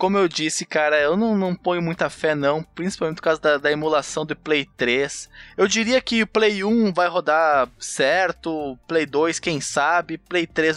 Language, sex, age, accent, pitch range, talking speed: Portuguese, male, 20-39, Brazilian, 145-180 Hz, 195 wpm